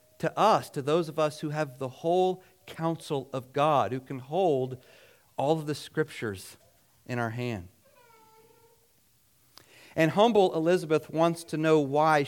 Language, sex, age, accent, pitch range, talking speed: English, male, 40-59, American, 120-160 Hz, 145 wpm